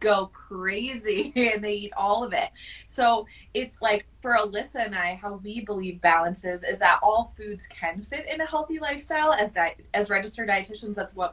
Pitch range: 185-225 Hz